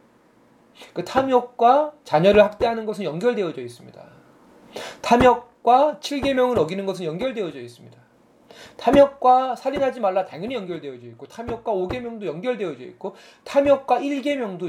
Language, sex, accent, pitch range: Korean, male, native, 185-250 Hz